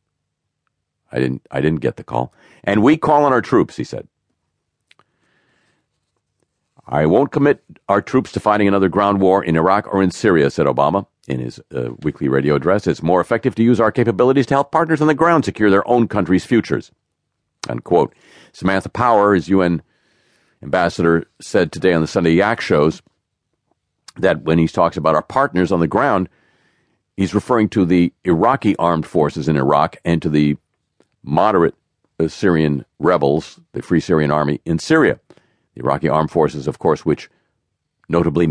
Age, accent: 50-69, American